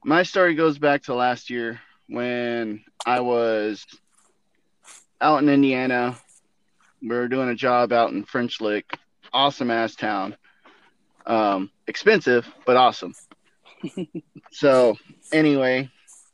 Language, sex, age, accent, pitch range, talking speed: English, male, 30-49, American, 115-150 Hz, 115 wpm